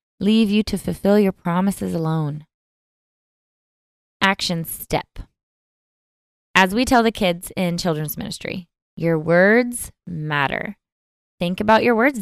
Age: 20-39